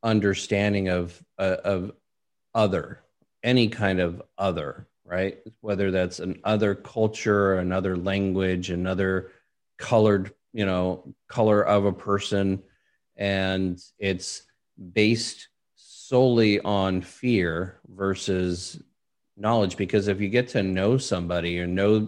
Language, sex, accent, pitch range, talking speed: English, male, American, 90-105 Hz, 115 wpm